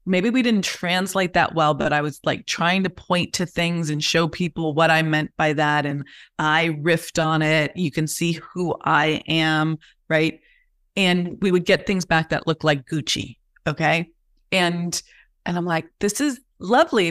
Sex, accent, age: female, American, 30-49